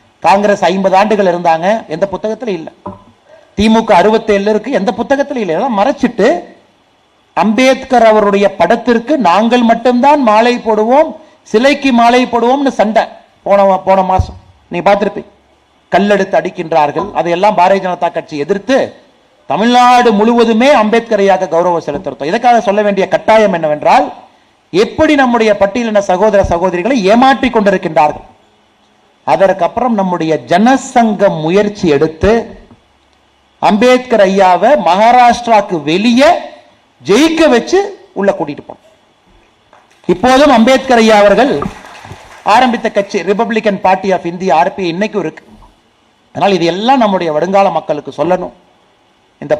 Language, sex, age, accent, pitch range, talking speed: Tamil, male, 30-49, native, 185-240 Hz, 85 wpm